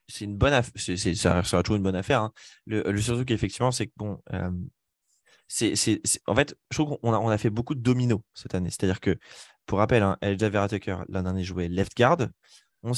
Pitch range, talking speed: 95-120 Hz, 235 wpm